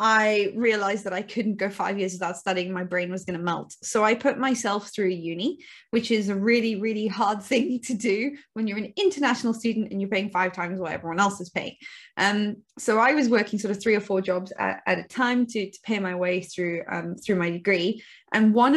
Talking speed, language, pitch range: 235 wpm, English, 185-225 Hz